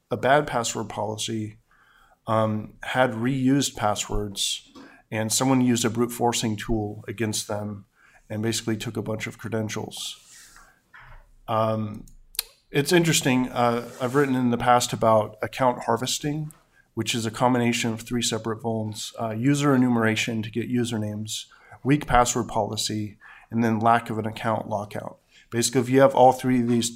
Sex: male